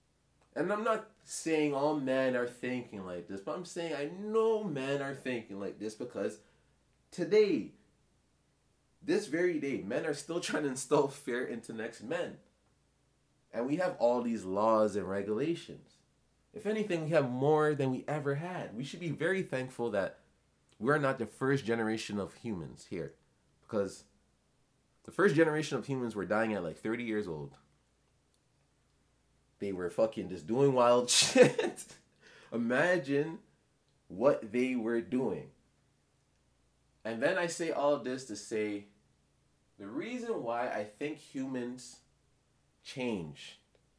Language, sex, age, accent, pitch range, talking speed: English, male, 30-49, American, 110-160 Hz, 145 wpm